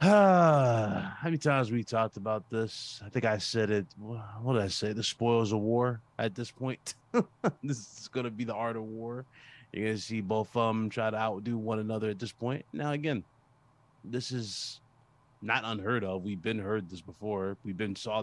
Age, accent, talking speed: 20-39, American, 200 wpm